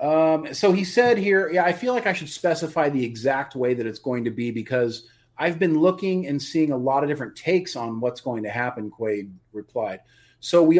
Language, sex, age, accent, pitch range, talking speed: English, male, 30-49, American, 115-160 Hz, 220 wpm